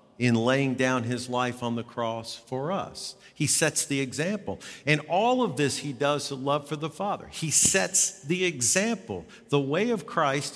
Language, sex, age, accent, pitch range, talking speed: English, male, 50-69, American, 125-175 Hz, 190 wpm